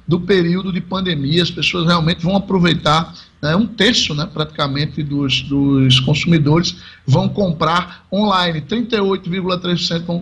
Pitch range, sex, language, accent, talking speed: 175-225 Hz, male, Portuguese, Brazilian, 130 wpm